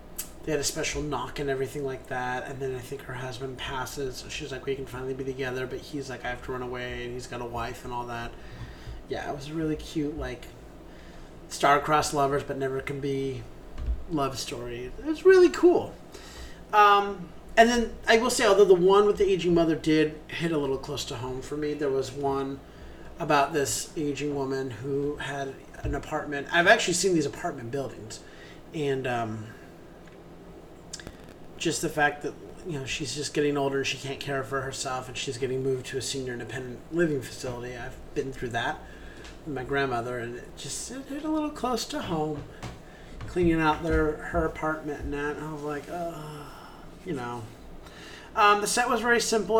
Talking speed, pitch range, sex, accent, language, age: 195 wpm, 130-160 Hz, male, American, English, 30-49